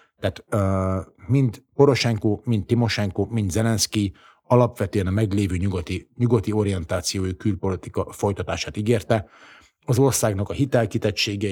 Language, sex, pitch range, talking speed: Hungarian, male, 95-115 Hz, 110 wpm